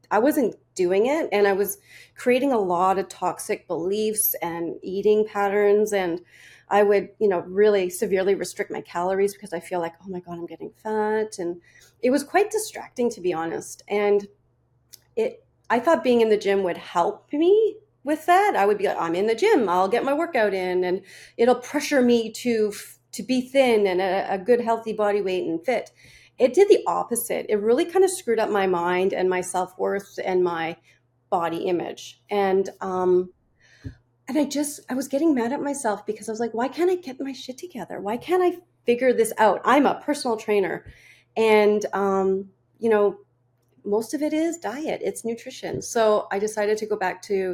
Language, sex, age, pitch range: English, female, 30-49, 185-245 Hz